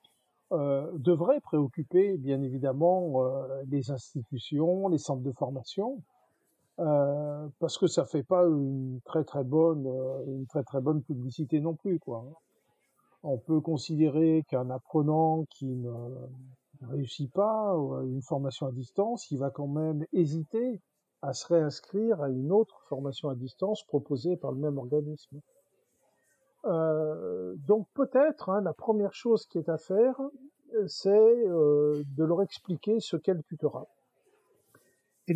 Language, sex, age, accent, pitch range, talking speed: French, male, 50-69, French, 140-190 Hz, 140 wpm